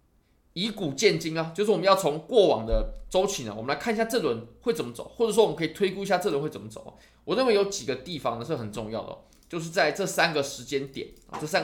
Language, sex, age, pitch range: Chinese, male, 20-39, 115-195 Hz